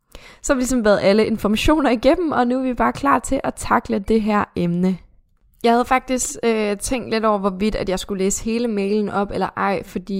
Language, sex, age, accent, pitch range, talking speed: Danish, female, 10-29, native, 185-220 Hz, 225 wpm